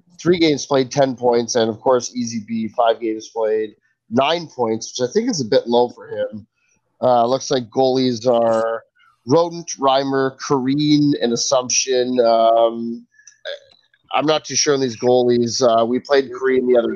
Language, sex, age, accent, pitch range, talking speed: English, male, 30-49, American, 115-135 Hz, 170 wpm